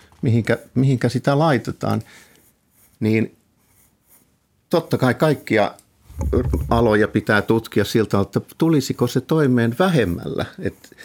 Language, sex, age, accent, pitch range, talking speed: Finnish, male, 50-69, native, 100-130 Hz, 100 wpm